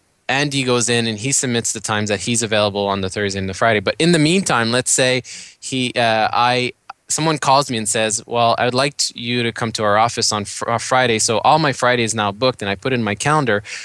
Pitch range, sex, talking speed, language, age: 105-130 Hz, male, 245 wpm, English, 20-39